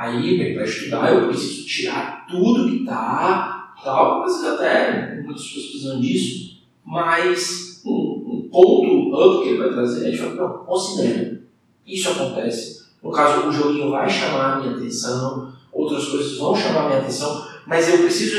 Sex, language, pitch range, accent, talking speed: male, Portuguese, 120-185 Hz, Brazilian, 160 wpm